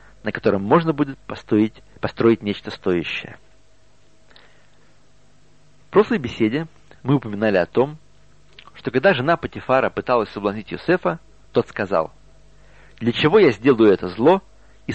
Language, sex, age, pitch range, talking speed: Russian, male, 40-59, 110-160 Hz, 125 wpm